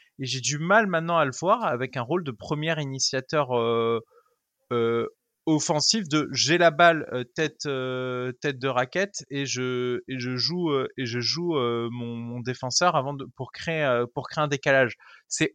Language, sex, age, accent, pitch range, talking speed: French, male, 20-39, French, 125-160 Hz, 200 wpm